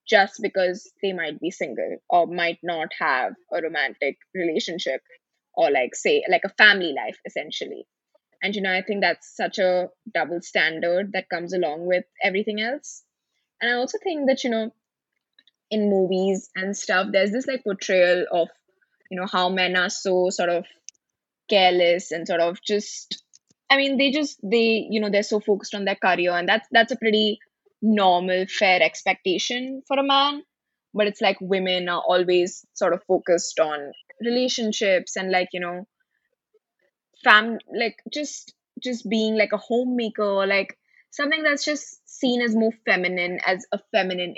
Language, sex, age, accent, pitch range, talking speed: English, female, 20-39, Indian, 185-235 Hz, 170 wpm